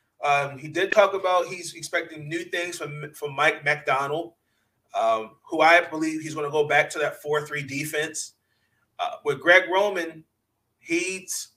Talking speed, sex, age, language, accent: 165 wpm, male, 30-49, English, American